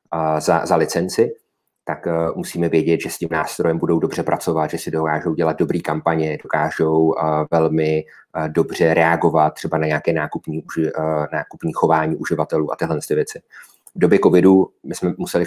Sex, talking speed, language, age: male, 170 wpm, Czech, 30-49